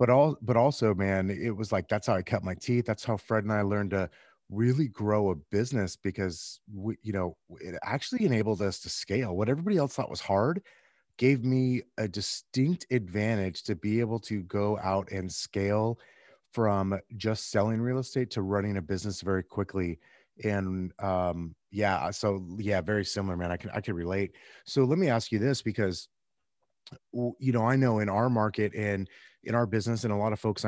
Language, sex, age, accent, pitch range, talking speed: English, male, 30-49, American, 95-120 Hz, 200 wpm